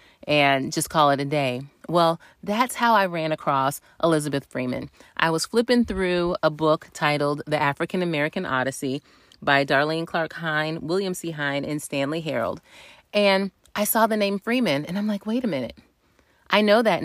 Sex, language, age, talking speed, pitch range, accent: female, English, 30-49, 175 wpm, 150-205 Hz, American